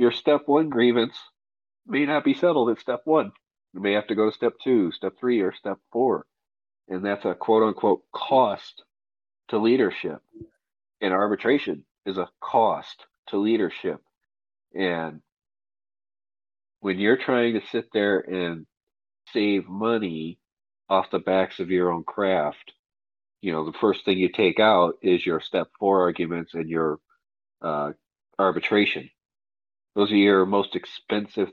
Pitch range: 90-120 Hz